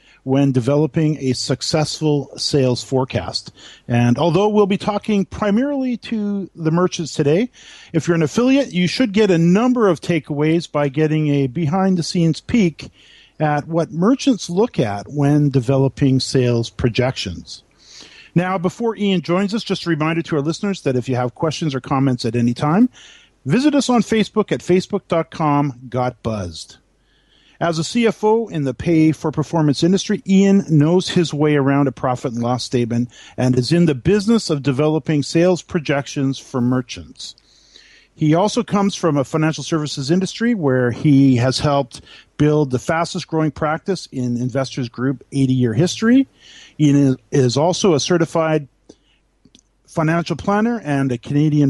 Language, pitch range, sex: English, 135-180 Hz, male